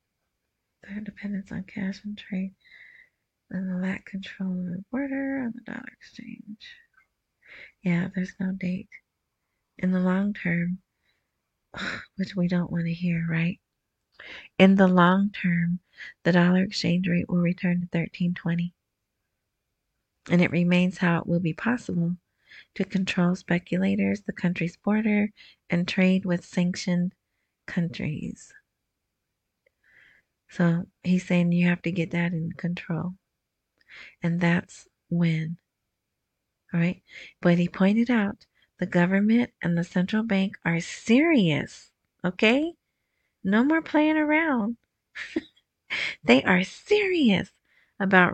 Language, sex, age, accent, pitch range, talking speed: English, female, 30-49, American, 175-205 Hz, 125 wpm